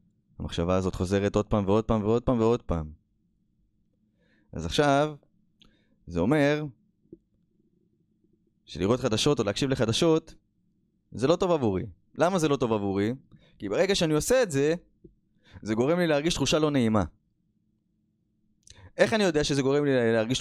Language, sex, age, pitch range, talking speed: Hebrew, male, 20-39, 100-140 Hz, 145 wpm